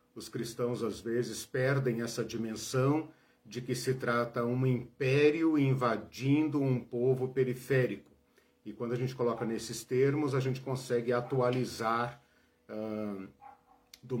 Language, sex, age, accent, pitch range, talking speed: Portuguese, male, 50-69, Brazilian, 120-150 Hz, 125 wpm